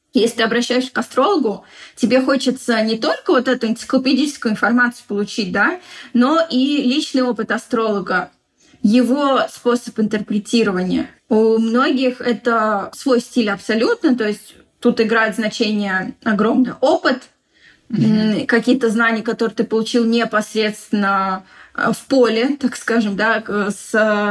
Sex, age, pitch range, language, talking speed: female, 20-39, 215-255 Hz, Russian, 115 wpm